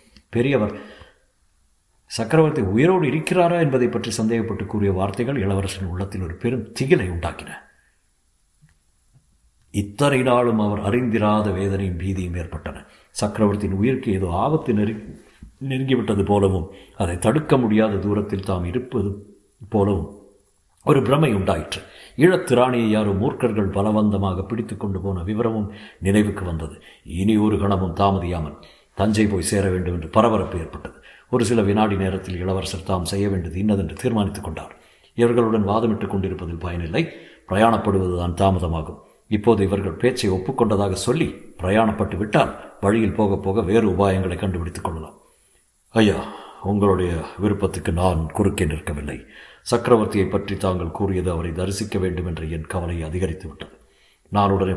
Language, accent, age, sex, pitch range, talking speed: Tamil, native, 50-69, male, 95-110 Hz, 115 wpm